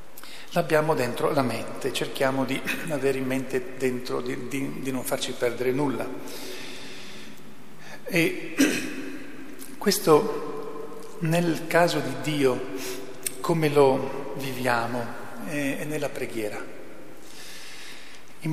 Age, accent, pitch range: 50-69, native, 130-150 Hz